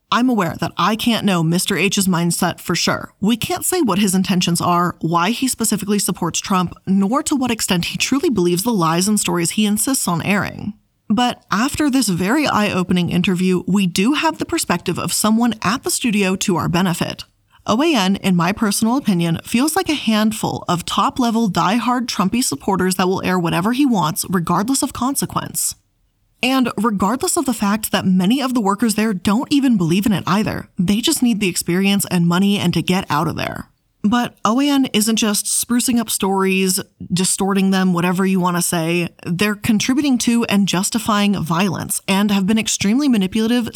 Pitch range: 180-235 Hz